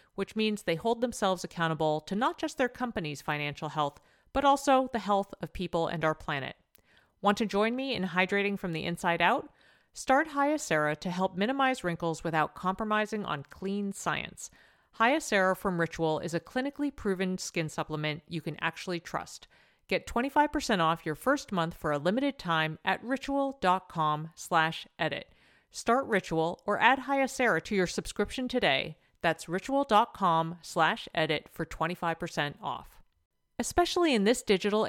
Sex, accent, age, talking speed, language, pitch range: female, American, 40-59, 155 wpm, English, 165-245 Hz